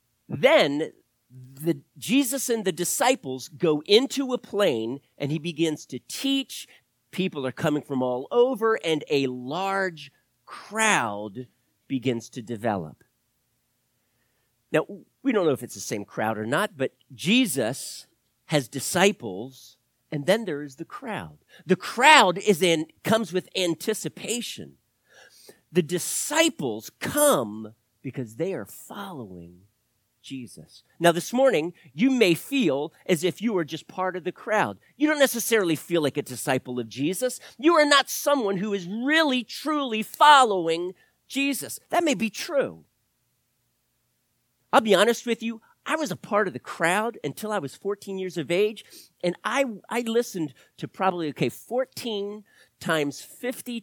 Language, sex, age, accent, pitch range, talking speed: English, male, 50-69, American, 140-230 Hz, 150 wpm